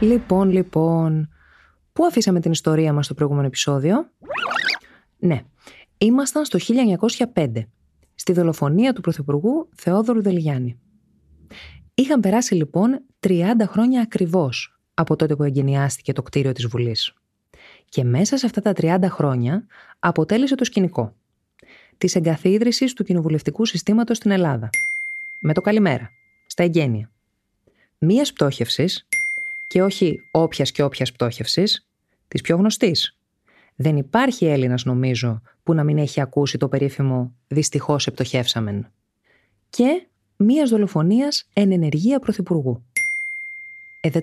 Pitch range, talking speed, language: 135-220 Hz, 115 wpm, Greek